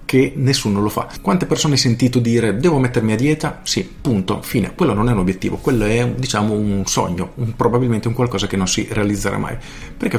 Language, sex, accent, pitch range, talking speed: Italian, male, native, 105-135 Hz, 210 wpm